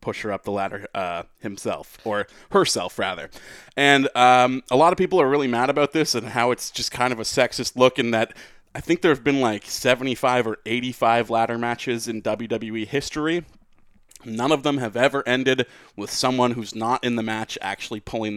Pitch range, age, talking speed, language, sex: 115-155 Hz, 20-39, 200 wpm, English, male